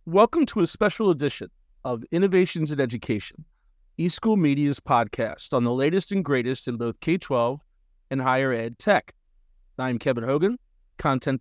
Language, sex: English, male